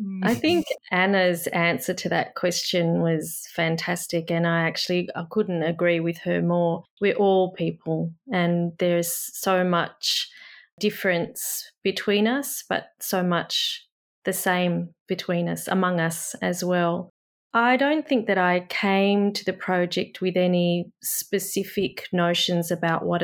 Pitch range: 170-195 Hz